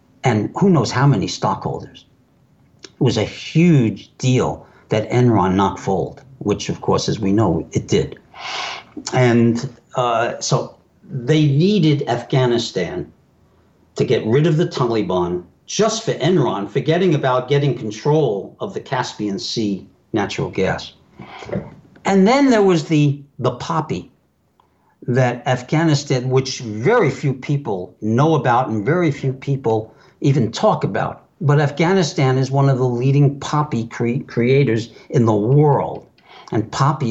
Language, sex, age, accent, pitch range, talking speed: English, male, 60-79, American, 115-150 Hz, 135 wpm